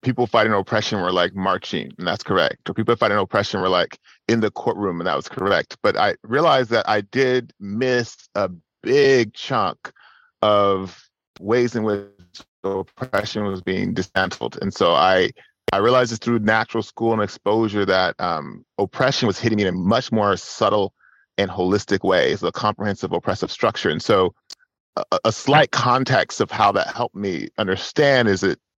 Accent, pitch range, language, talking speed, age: American, 100-120 Hz, English, 175 wpm, 30-49